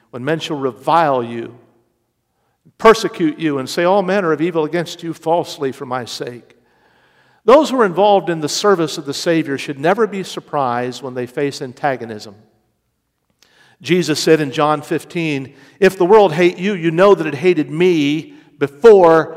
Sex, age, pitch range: male, 50-69, 145-200 Hz